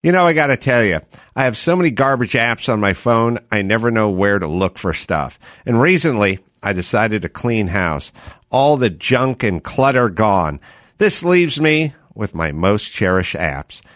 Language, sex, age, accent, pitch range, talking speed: English, male, 50-69, American, 100-145 Hz, 195 wpm